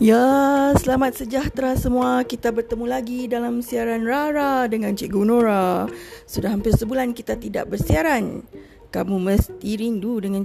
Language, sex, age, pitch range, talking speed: Malay, female, 30-49, 230-275 Hz, 130 wpm